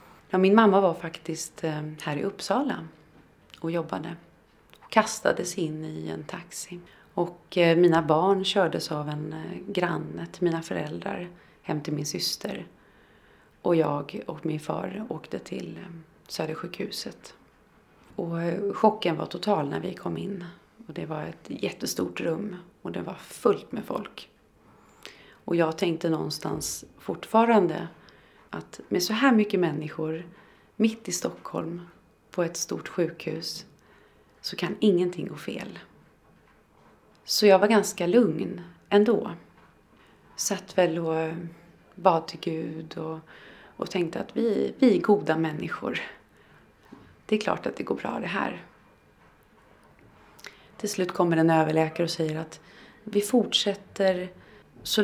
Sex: female